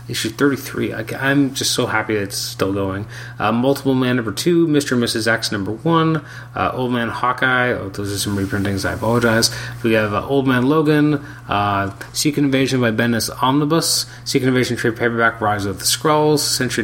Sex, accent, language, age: male, American, English, 30-49